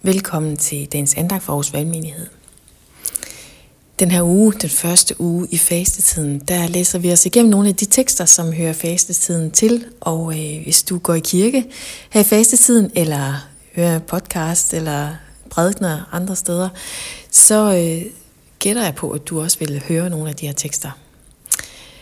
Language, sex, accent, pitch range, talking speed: Danish, female, native, 150-190 Hz, 160 wpm